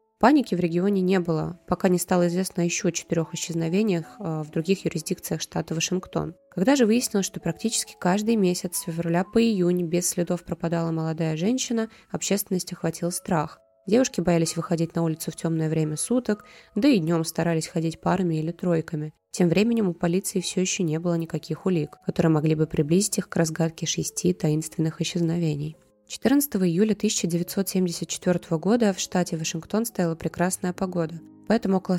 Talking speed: 160 wpm